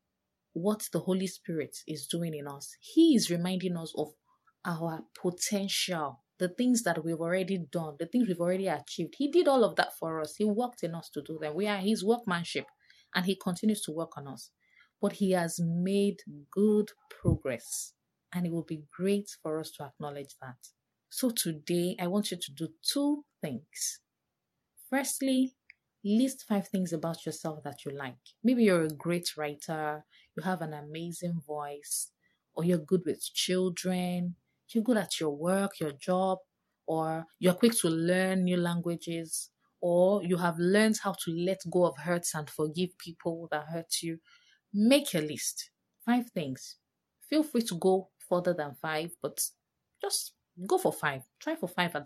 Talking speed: 175 wpm